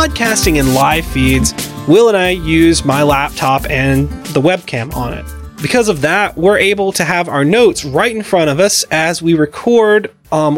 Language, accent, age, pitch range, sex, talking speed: English, American, 30-49, 155-210 Hz, male, 180 wpm